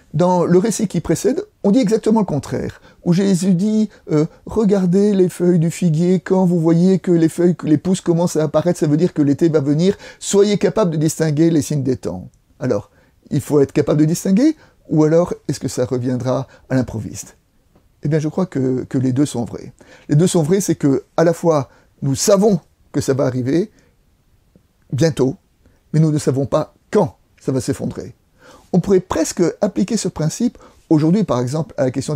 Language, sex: French, male